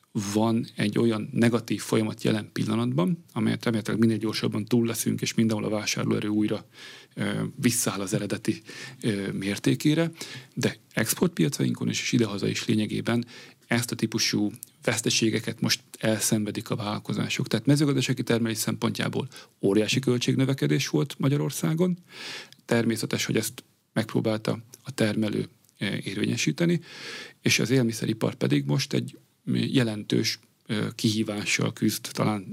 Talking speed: 115 wpm